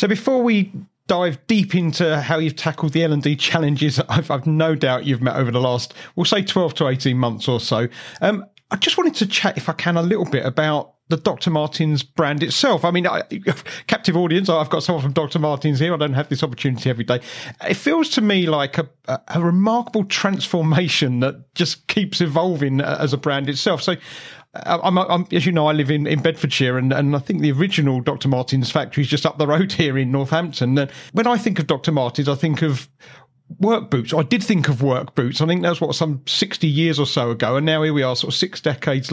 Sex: male